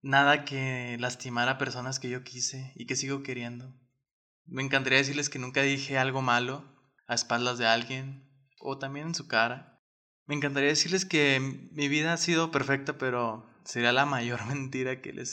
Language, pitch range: Spanish, 125-145 Hz